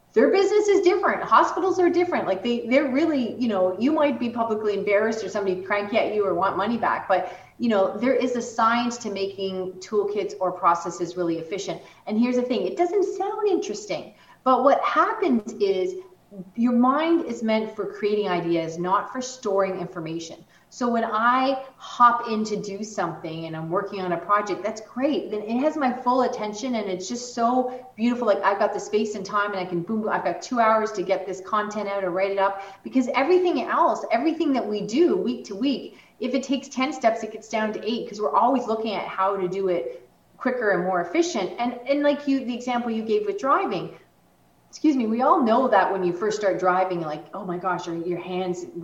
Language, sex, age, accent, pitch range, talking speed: English, female, 30-49, American, 190-255 Hz, 215 wpm